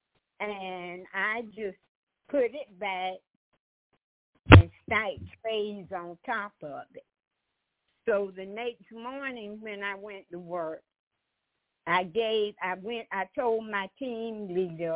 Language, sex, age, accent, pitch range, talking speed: English, female, 60-79, American, 175-225 Hz, 125 wpm